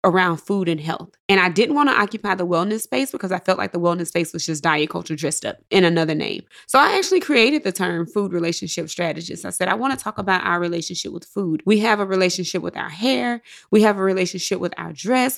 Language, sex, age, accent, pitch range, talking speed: English, female, 20-39, American, 175-220 Hz, 245 wpm